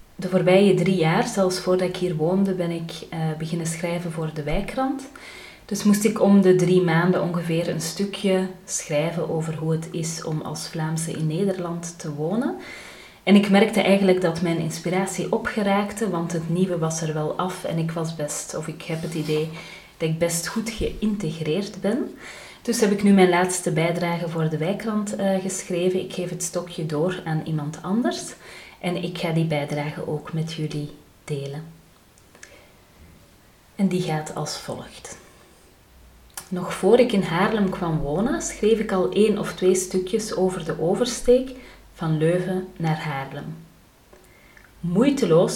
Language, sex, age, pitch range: Dutch, female, 30-49, 165-195 Hz